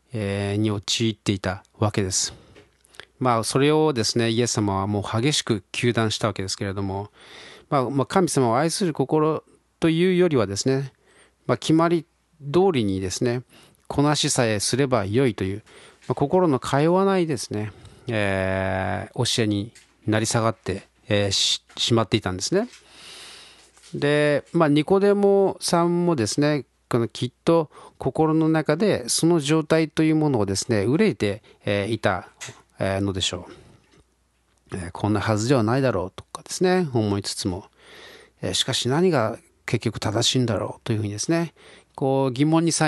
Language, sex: Japanese, male